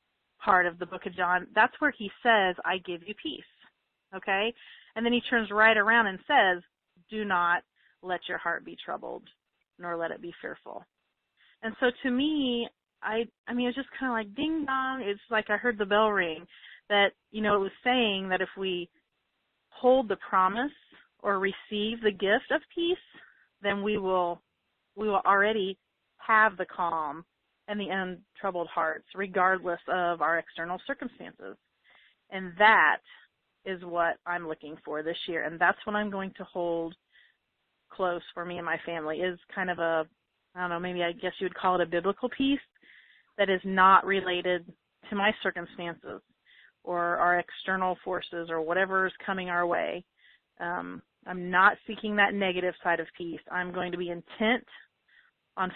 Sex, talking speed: female, 175 wpm